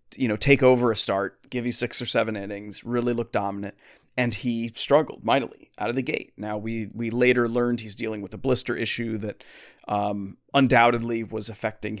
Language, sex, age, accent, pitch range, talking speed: English, male, 30-49, American, 105-125 Hz, 195 wpm